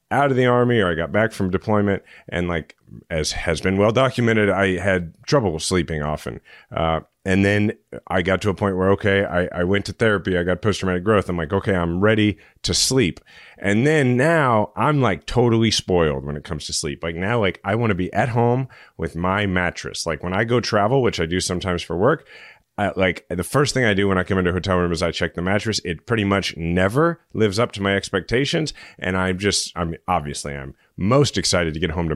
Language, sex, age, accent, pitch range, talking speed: English, male, 30-49, American, 90-115 Hz, 235 wpm